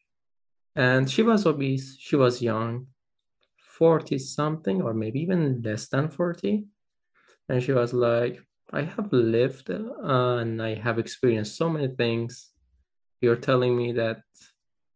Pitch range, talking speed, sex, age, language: 120-145 Hz, 130 wpm, male, 20-39, Persian